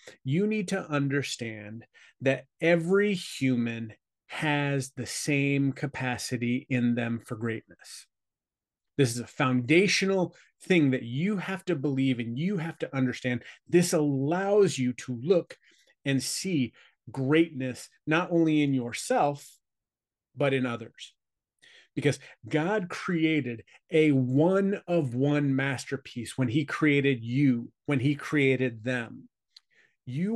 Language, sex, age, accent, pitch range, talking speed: English, male, 30-49, American, 130-170 Hz, 120 wpm